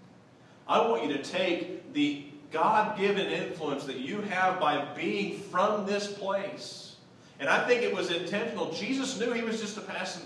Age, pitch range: 40-59, 150-200 Hz